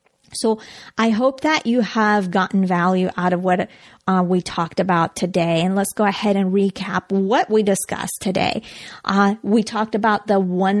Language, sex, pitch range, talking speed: English, female, 185-220 Hz, 180 wpm